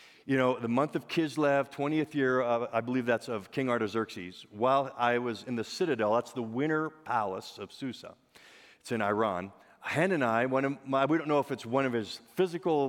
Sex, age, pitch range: male, 50-69, 120-170 Hz